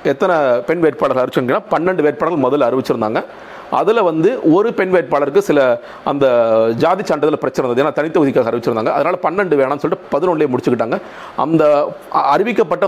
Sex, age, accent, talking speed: male, 40-59, native, 140 wpm